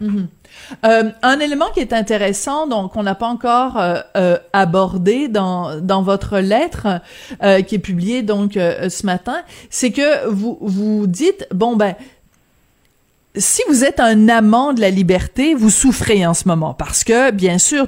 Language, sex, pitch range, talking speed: French, female, 190-250 Hz, 180 wpm